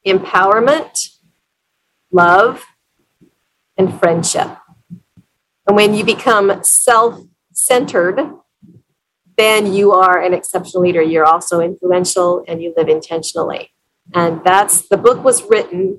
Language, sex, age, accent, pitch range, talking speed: English, female, 40-59, American, 185-230 Hz, 110 wpm